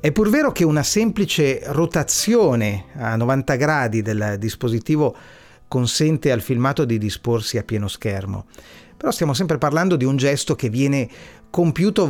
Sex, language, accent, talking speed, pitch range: male, Italian, native, 150 wpm, 115-155 Hz